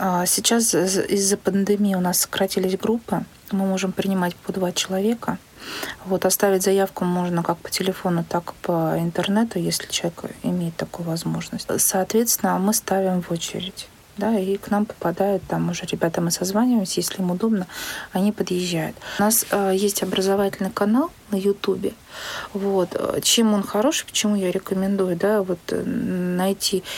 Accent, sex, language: native, female, Russian